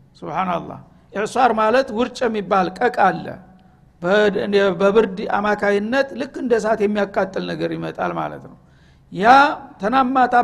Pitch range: 200-250 Hz